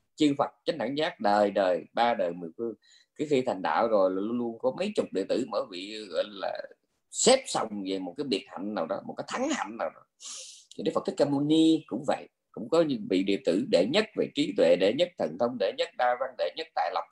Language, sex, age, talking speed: Vietnamese, male, 20-39, 255 wpm